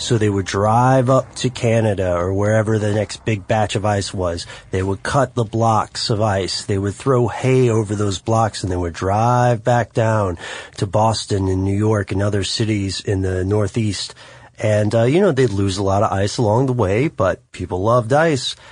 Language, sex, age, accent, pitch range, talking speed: English, male, 30-49, American, 100-130 Hz, 205 wpm